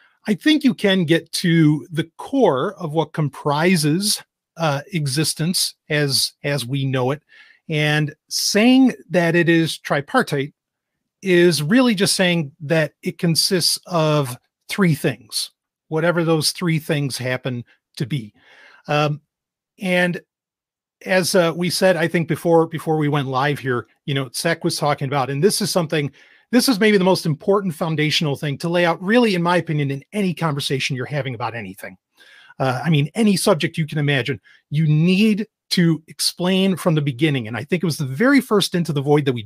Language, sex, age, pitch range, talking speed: English, male, 40-59, 145-185 Hz, 175 wpm